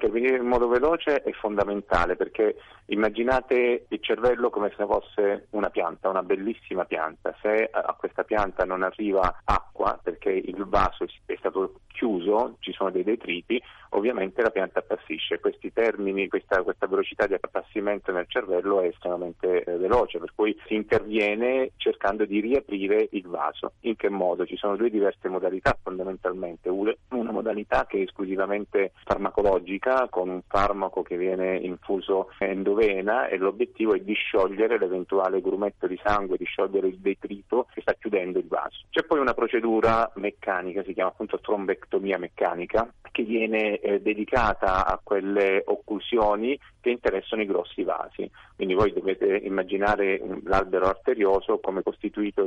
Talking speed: 150 wpm